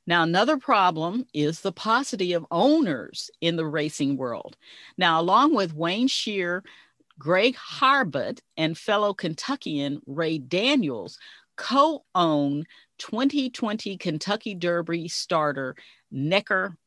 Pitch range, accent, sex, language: 155-225 Hz, American, female, English